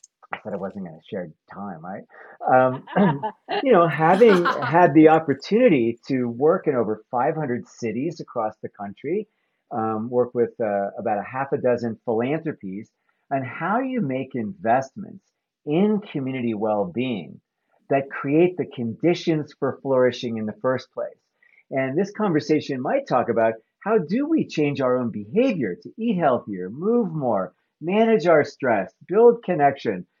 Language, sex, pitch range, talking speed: English, male, 120-170 Hz, 155 wpm